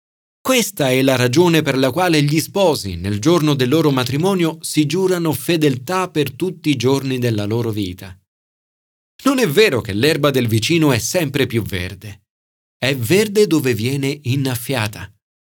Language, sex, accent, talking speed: Italian, male, native, 155 wpm